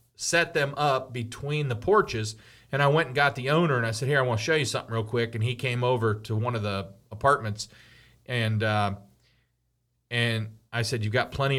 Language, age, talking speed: English, 40-59, 215 wpm